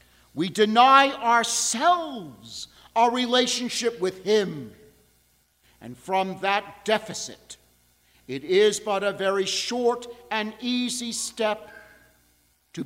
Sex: male